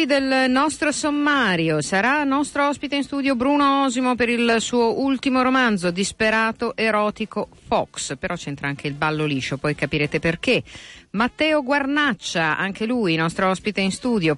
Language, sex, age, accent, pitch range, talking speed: Italian, female, 50-69, native, 150-225 Hz, 145 wpm